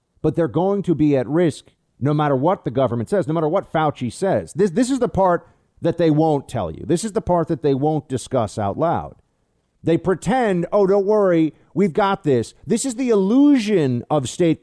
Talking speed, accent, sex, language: 215 wpm, American, male, English